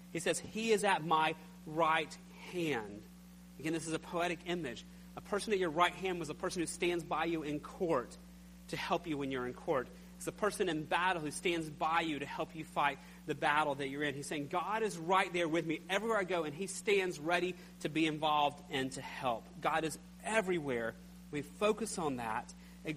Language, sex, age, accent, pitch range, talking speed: English, male, 40-59, American, 155-190 Hz, 215 wpm